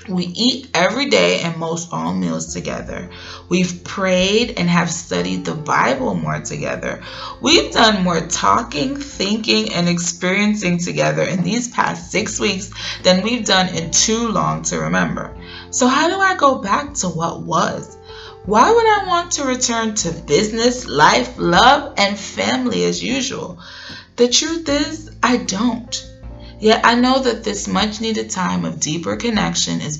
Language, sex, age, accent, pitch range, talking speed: English, female, 20-39, American, 150-230 Hz, 155 wpm